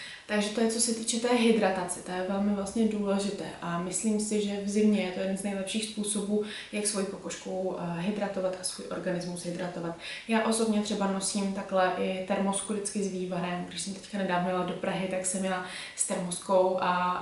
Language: Czech